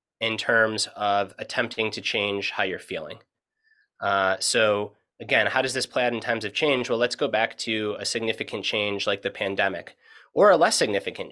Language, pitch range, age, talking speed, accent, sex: English, 110-160 Hz, 30-49, 190 wpm, American, male